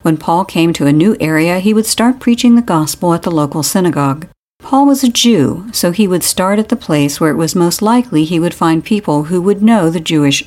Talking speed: 240 wpm